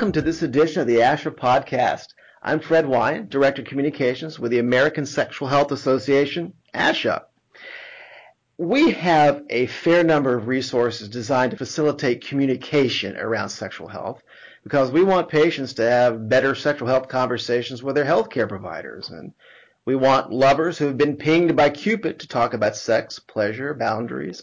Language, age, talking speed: English, 40-59, 160 wpm